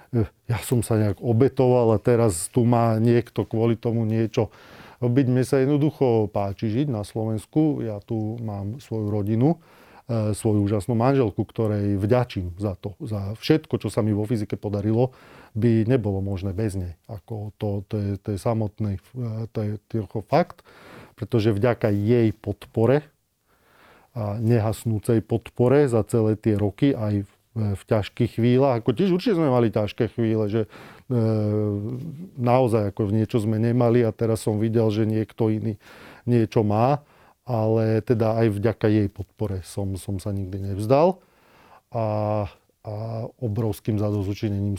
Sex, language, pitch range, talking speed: male, Slovak, 105-120 Hz, 150 wpm